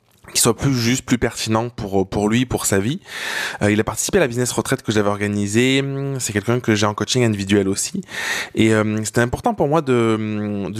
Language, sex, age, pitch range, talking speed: French, male, 20-39, 105-125 Hz, 215 wpm